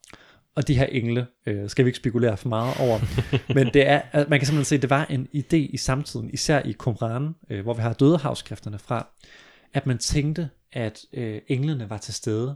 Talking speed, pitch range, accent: 210 wpm, 110-145 Hz, native